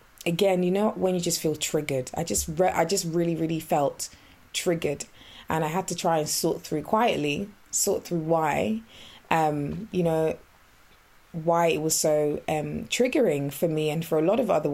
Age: 20-39